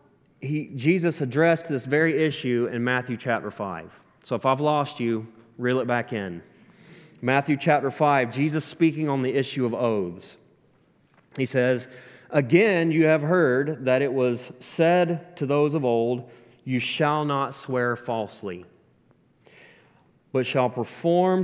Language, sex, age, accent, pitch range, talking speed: English, male, 30-49, American, 120-155 Hz, 145 wpm